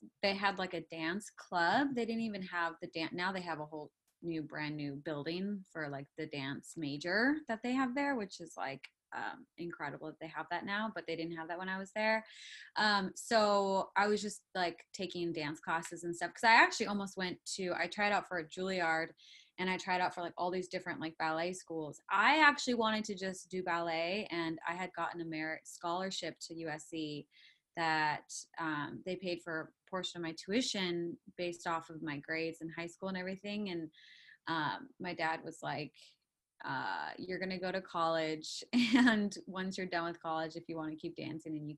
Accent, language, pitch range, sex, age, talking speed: American, English, 160-190 Hz, female, 20-39, 210 wpm